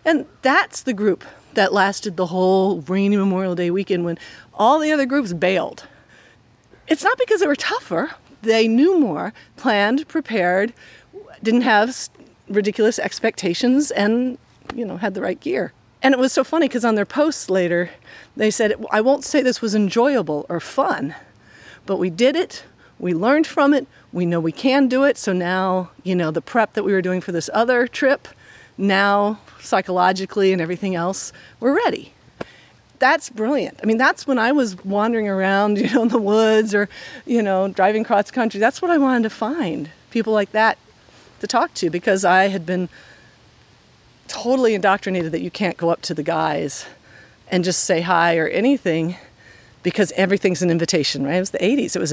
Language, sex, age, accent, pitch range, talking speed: English, female, 40-59, American, 185-250 Hz, 185 wpm